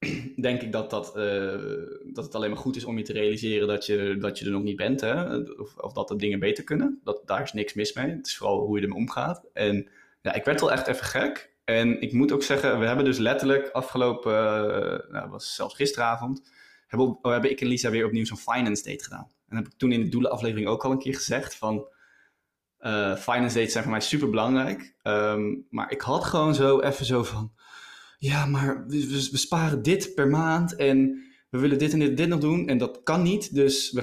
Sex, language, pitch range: male, Dutch, 115-140 Hz